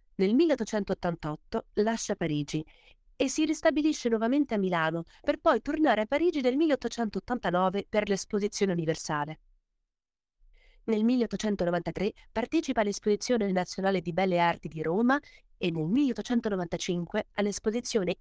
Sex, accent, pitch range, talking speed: female, native, 175-235 Hz, 110 wpm